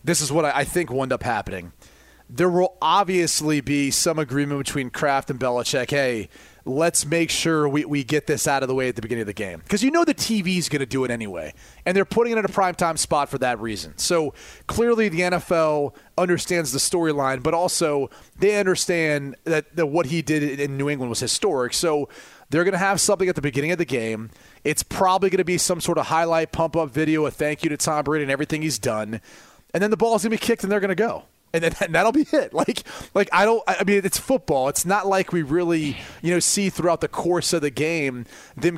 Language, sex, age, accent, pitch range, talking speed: English, male, 30-49, American, 145-185 Hz, 235 wpm